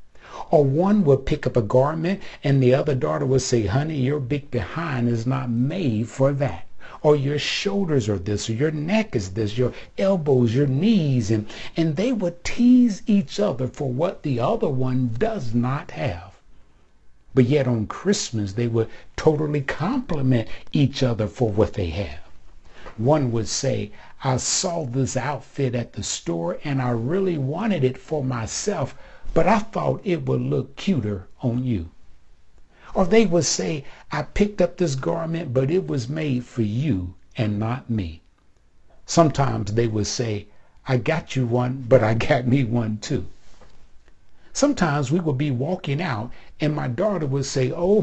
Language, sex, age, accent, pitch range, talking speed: English, male, 60-79, American, 115-155 Hz, 170 wpm